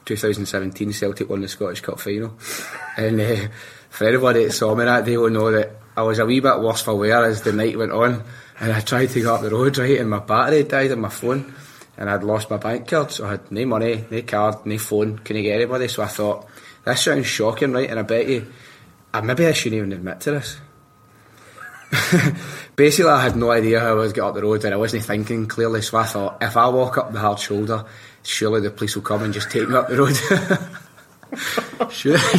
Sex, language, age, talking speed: male, English, 20-39, 230 wpm